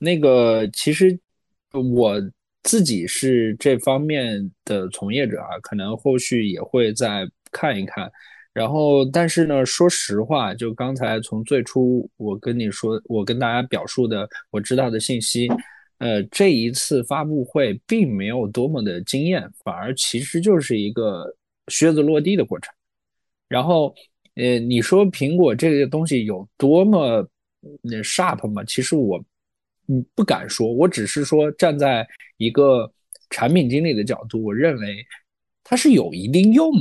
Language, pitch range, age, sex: Chinese, 115-170 Hz, 20-39, male